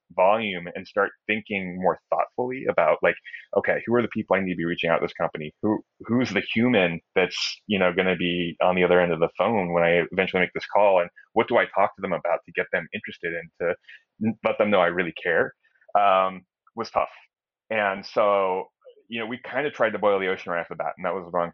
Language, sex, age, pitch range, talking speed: English, male, 30-49, 90-110 Hz, 250 wpm